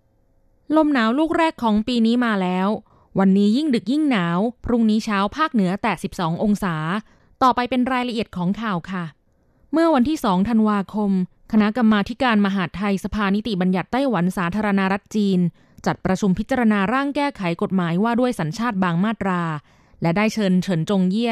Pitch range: 180-225 Hz